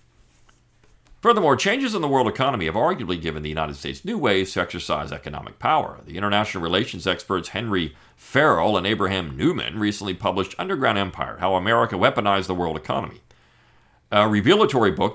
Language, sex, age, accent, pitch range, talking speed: English, male, 50-69, American, 85-115 Hz, 160 wpm